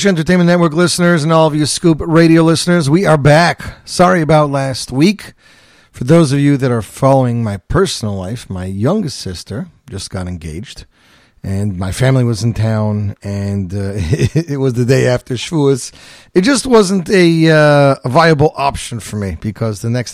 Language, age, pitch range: English, 40-59, 110-145 Hz